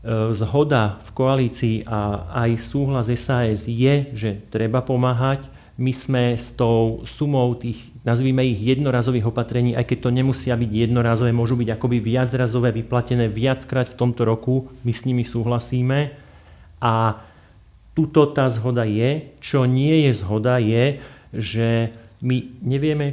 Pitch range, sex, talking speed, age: 115-130 Hz, male, 135 wpm, 40-59